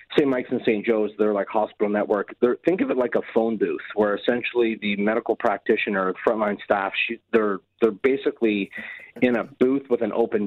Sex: male